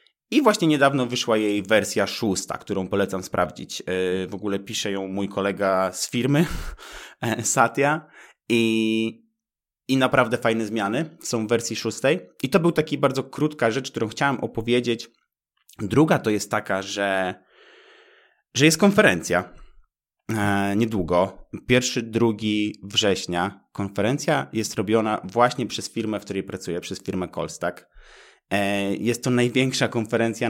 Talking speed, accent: 130 wpm, native